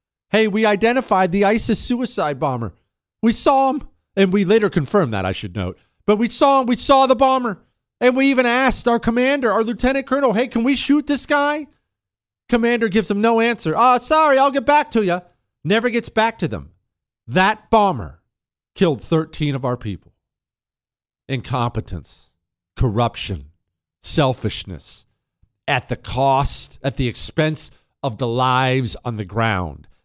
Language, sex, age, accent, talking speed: English, male, 40-59, American, 160 wpm